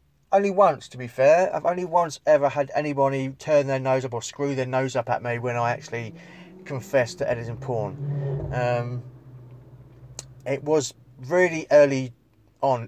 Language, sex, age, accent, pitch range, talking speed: English, male, 30-49, British, 120-140 Hz, 165 wpm